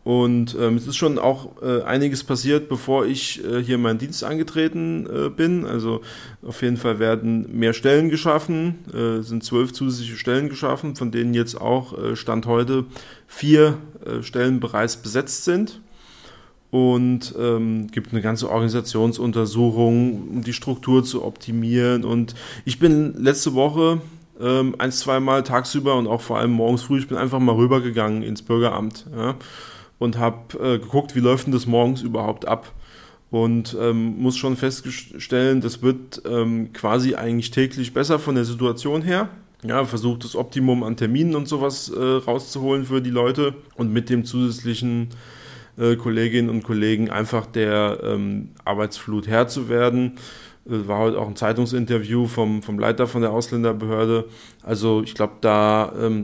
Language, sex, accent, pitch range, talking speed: German, male, German, 115-130 Hz, 160 wpm